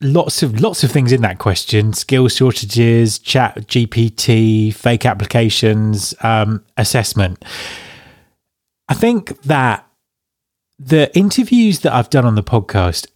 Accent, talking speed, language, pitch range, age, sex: British, 125 wpm, English, 100-130 Hz, 20-39, male